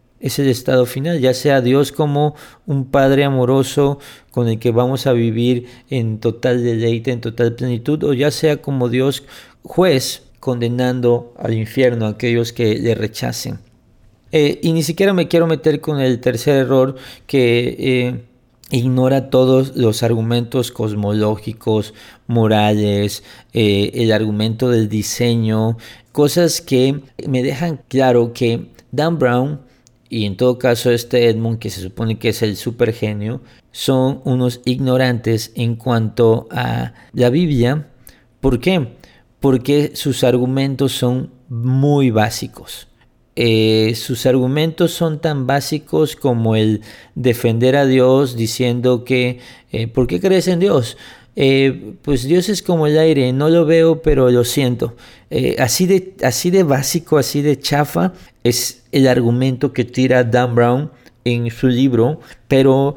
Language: Spanish